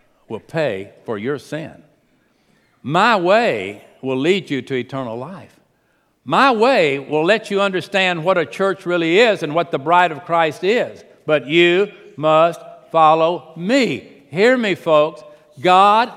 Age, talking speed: 60-79, 150 wpm